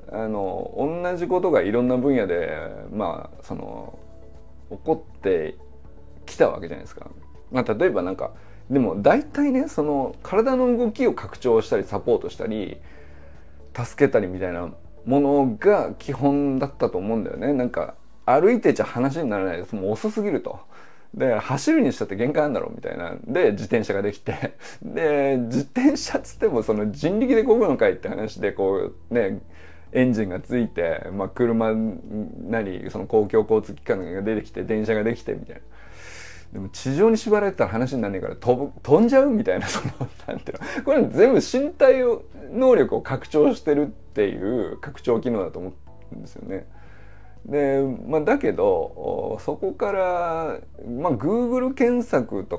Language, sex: Japanese, male